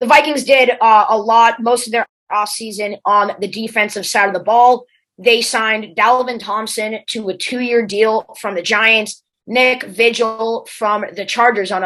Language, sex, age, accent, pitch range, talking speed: English, female, 20-39, American, 200-245 Hz, 175 wpm